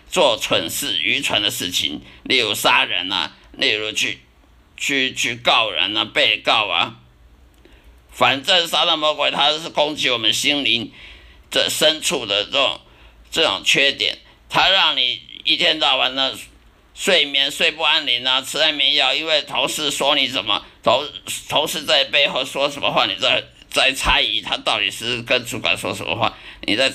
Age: 50-69